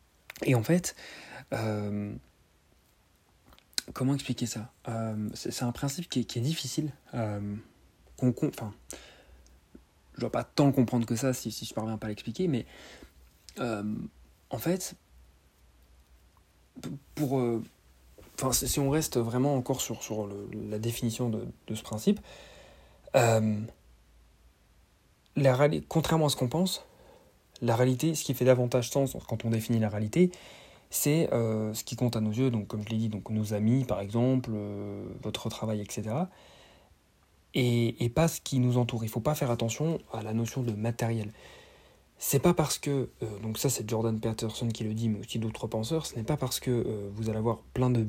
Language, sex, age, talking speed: French, male, 40-59, 180 wpm